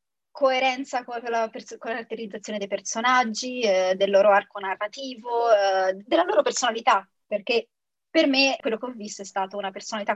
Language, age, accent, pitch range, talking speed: Italian, 20-39, native, 195-245 Hz, 160 wpm